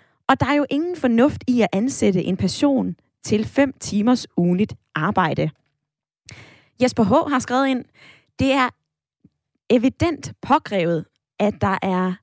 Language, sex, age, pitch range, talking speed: Danish, female, 20-39, 190-250 Hz, 140 wpm